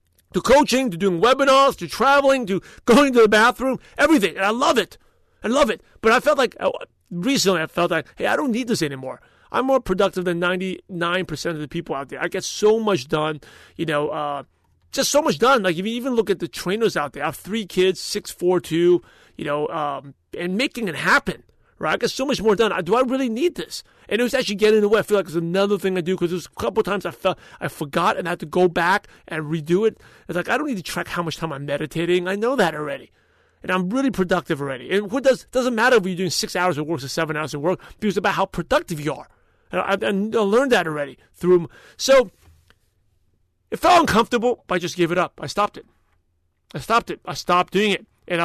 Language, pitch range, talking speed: English, 160-220 Hz, 250 wpm